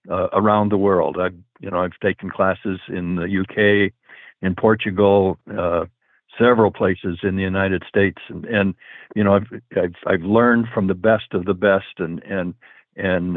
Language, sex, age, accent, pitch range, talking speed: English, male, 60-79, American, 95-110 Hz, 175 wpm